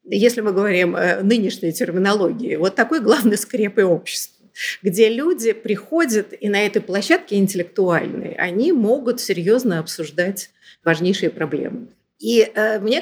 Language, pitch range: Russian, 180-250 Hz